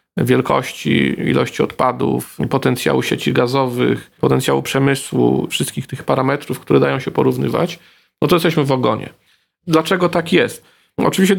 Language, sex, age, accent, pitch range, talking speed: Polish, male, 40-59, native, 125-140 Hz, 125 wpm